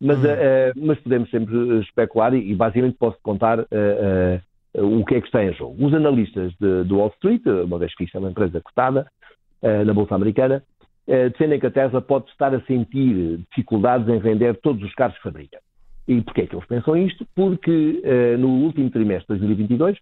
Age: 50-69